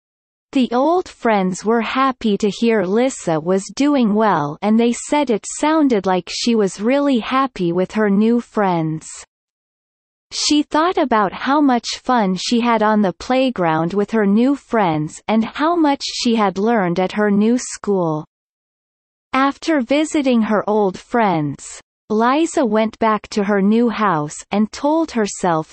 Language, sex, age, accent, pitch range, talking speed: Danish, female, 30-49, American, 200-260 Hz, 150 wpm